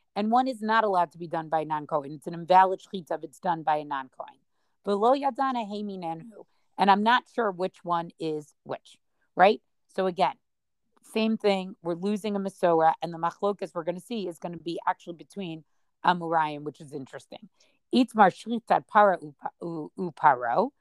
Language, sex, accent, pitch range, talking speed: English, female, American, 170-215 Hz, 180 wpm